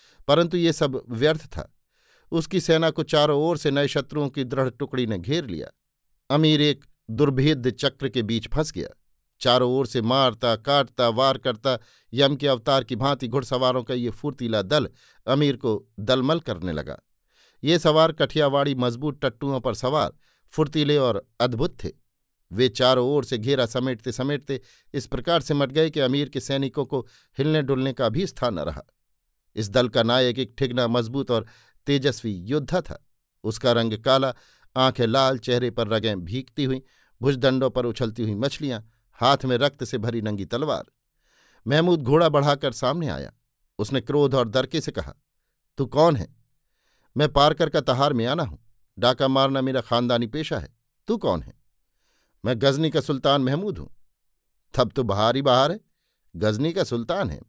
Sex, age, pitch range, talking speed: male, 50-69, 120-145 Hz, 170 wpm